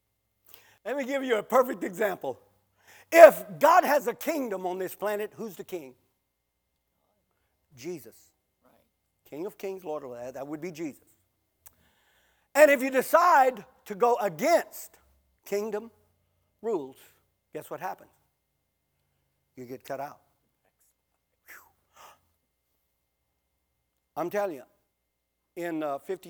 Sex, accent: male, American